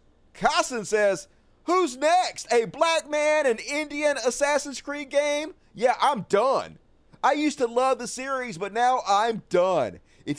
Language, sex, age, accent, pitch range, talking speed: English, male, 30-49, American, 200-290 Hz, 150 wpm